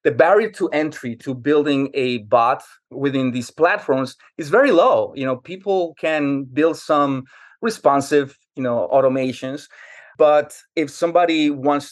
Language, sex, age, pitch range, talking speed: English, male, 30-49, 125-145 Hz, 140 wpm